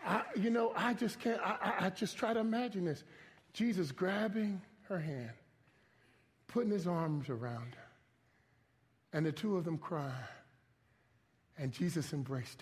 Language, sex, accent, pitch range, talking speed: English, male, American, 130-220 Hz, 150 wpm